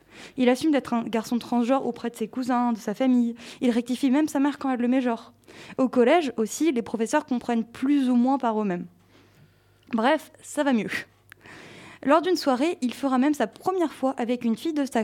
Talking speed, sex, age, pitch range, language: 210 wpm, female, 20-39, 230-280 Hz, French